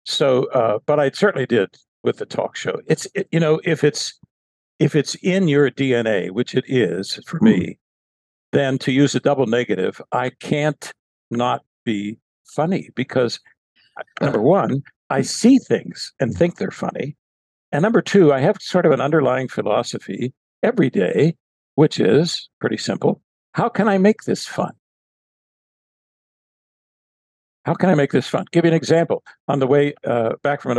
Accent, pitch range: American, 115-160 Hz